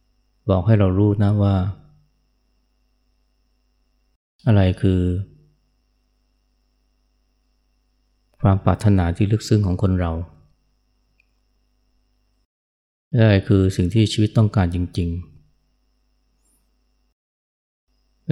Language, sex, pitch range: Thai, male, 95-115 Hz